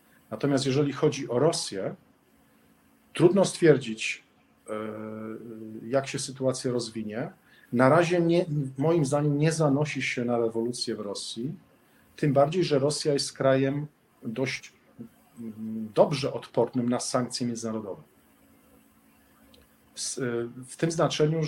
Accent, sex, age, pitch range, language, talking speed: native, male, 40-59, 115-150 Hz, Polish, 105 wpm